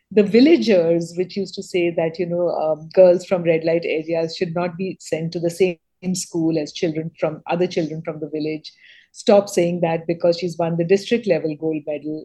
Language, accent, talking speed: English, Indian, 205 wpm